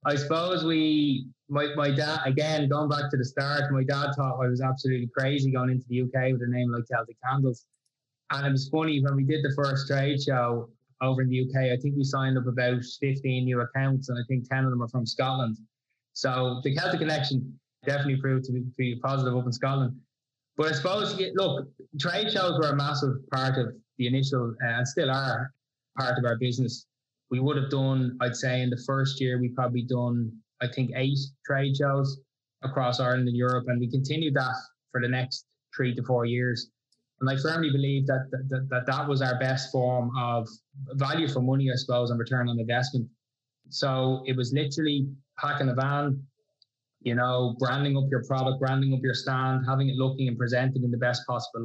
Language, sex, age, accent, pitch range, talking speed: English, male, 20-39, Irish, 125-140 Hz, 205 wpm